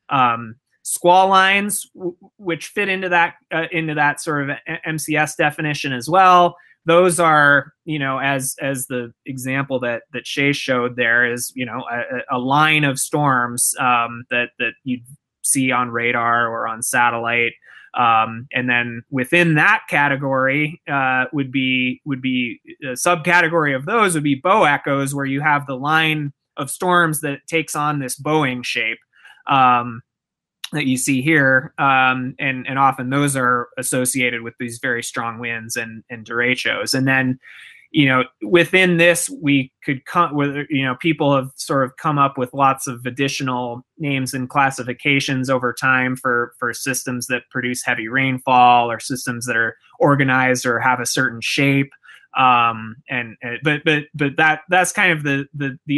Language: English